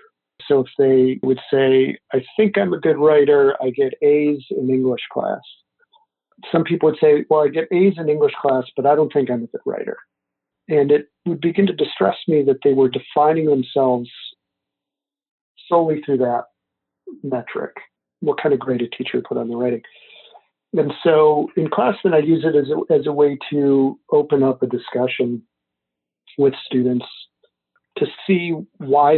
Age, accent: 50-69, American